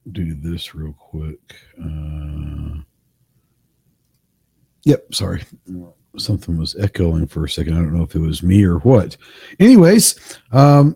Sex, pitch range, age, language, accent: male, 100-125 Hz, 50-69, English, American